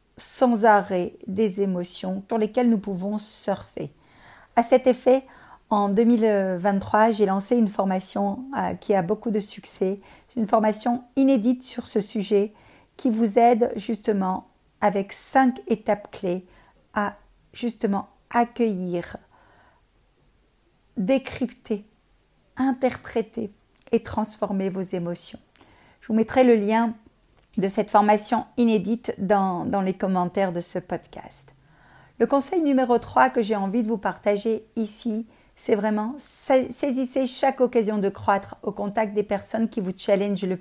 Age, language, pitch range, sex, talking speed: 50-69, French, 200-240 Hz, female, 130 wpm